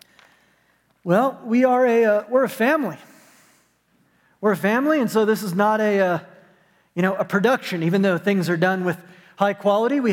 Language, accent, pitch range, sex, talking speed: English, American, 175-220 Hz, male, 185 wpm